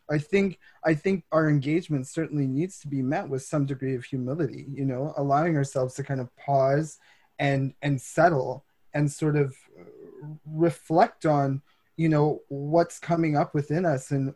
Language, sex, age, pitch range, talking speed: English, male, 20-39, 140-160 Hz, 165 wpm